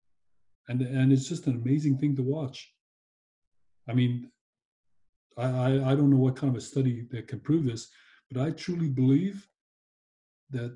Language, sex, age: English, male, 40-59